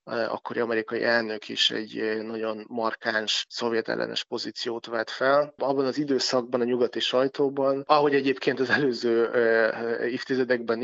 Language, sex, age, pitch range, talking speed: Hungarian, male, 20-39, 115-130 Hz, 125 wpm